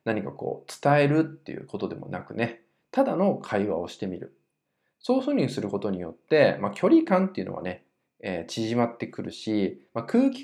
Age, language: 20-39, Japanese